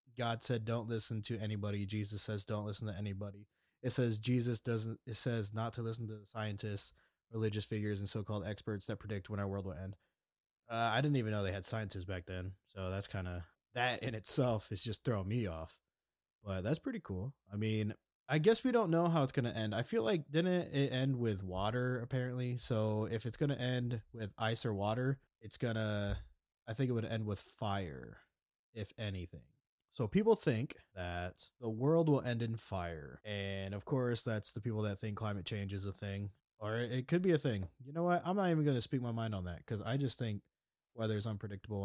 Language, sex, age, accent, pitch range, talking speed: English, male, 20-39, American, 100-125 Hz, 220 wpm